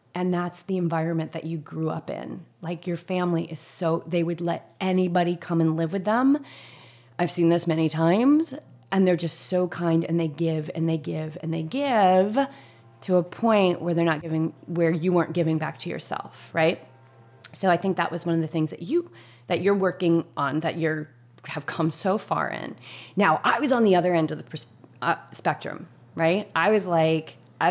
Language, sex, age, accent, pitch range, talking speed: English, female, 30-49, American, 160-185 Hz, 205 wpm